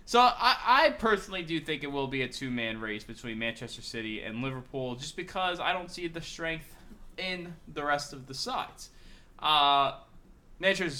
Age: 20-39